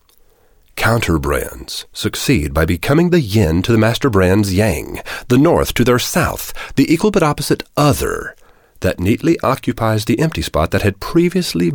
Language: English